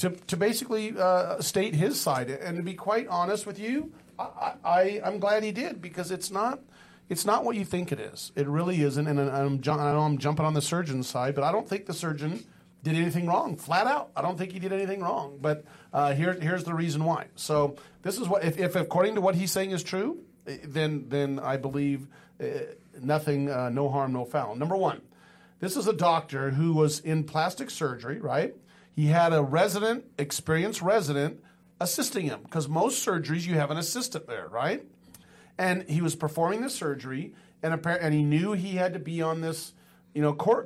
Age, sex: 40-59, male